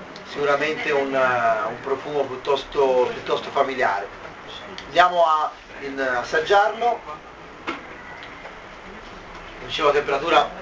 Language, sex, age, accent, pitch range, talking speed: Italian, male, 30-49, native, 140-165 Hz, 85 wpm